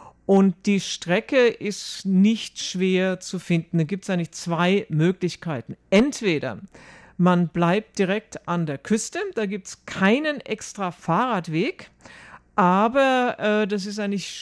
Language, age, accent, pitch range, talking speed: German, 50-69, German, 165-210 Hz, 135 wpm